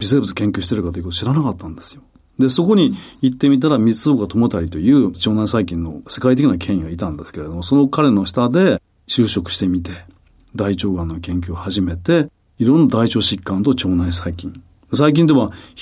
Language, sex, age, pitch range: Japanese, male, 40-59, 90-130 Hz